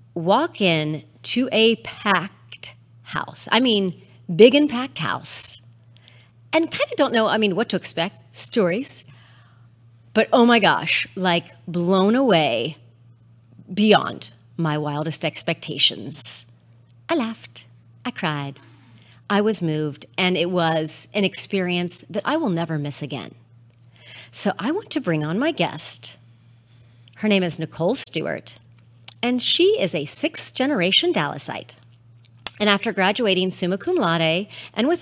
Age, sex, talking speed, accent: 40-59, female, 135 wpm, American